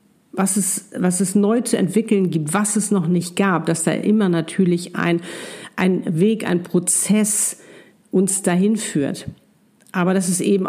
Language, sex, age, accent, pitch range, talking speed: German, female, 50-69, German, 175-205 Hz, 155 wpm